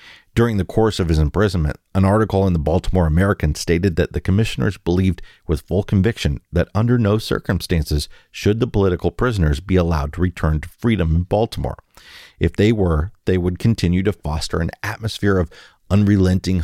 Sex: male